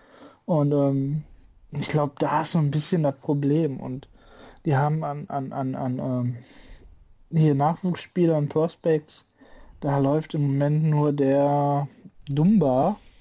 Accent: German